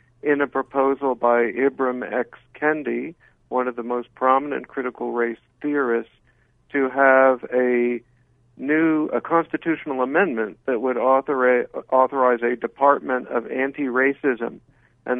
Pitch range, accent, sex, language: 125-145 Hz, American, male, English